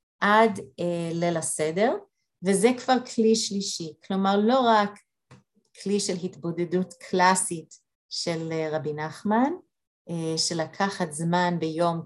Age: 30-49